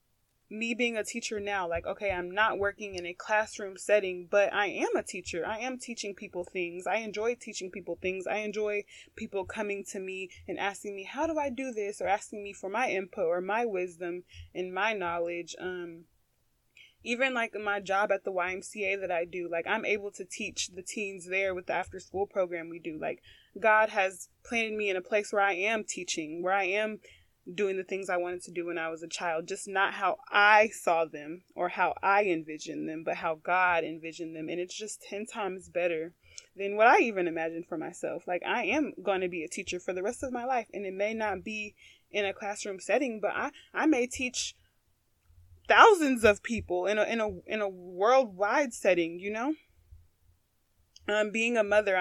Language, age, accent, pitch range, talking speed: English, 20-39, American, 175-215 Hz, 205 wpm